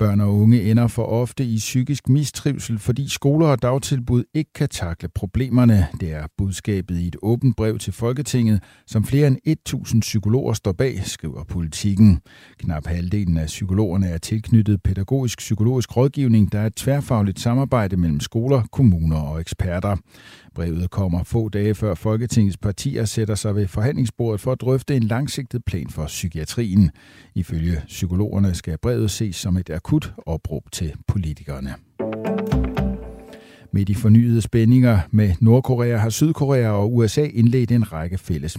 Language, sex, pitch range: Danish, male, 90-120 Hz